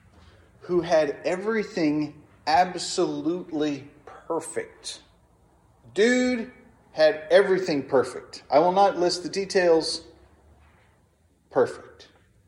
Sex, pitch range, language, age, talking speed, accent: male, 110-185 Hz, English, 30-49, 75 wpm, American